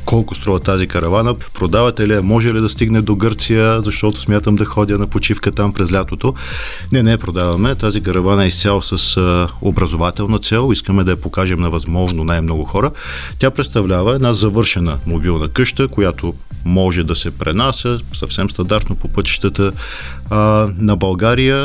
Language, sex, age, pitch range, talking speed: Bulgarian, male, 40-59, 90-110 Hz, 155 wpm